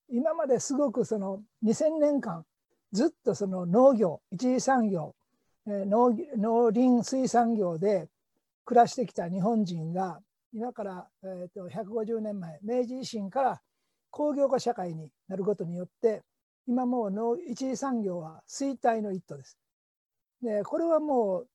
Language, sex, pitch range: Japanese, male, 200-265 Hz